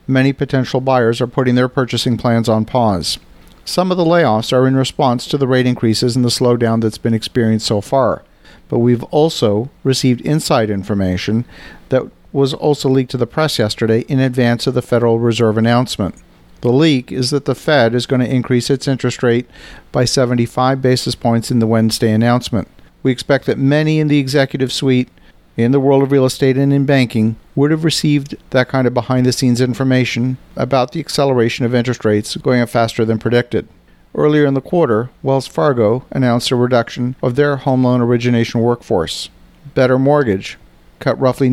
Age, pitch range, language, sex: 50-69, 115-135 Hz, English, male